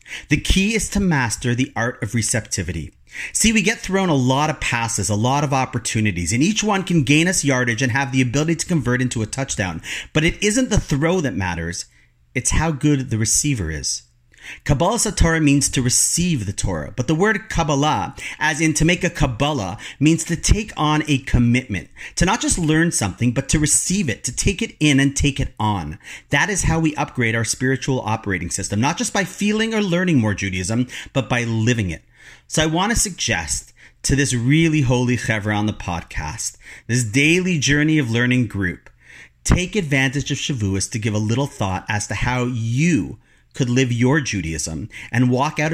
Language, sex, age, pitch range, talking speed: English, male, 40-59, 115-170 Hz, 195 wpm